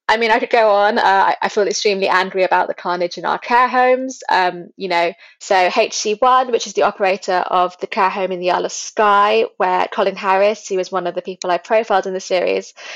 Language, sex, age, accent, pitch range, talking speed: English, female, 20-39, British, 175-205 Hz, 235 wpm